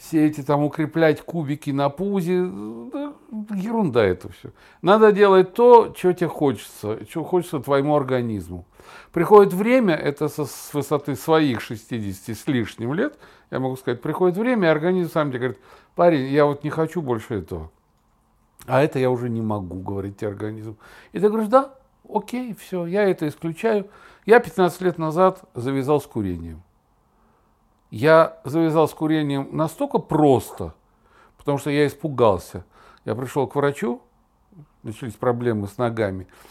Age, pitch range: 60-79, 125-180 Hz